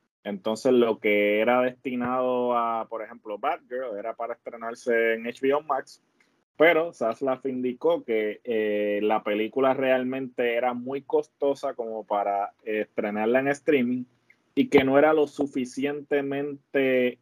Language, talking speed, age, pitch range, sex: Spanish, 135 wpm, 20-39, 110-135 Hz, male